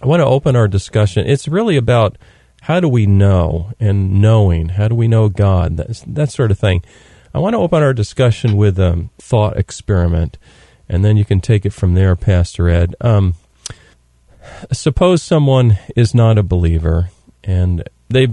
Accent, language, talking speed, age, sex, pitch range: American, English, 175 wpm, 40-59, male, 95-120 Hz